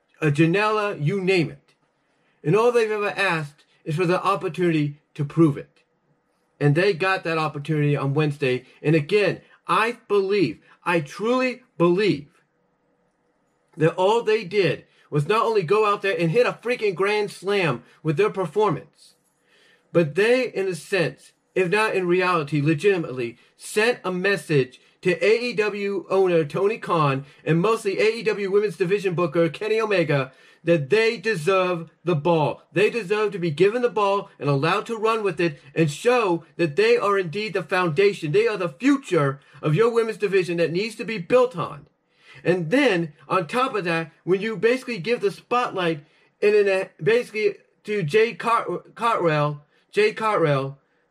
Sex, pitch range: male, 165-215 Hz